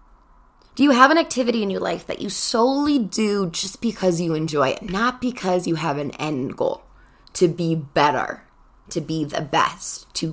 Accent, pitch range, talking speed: American, 165-240 Hz, 185 wpm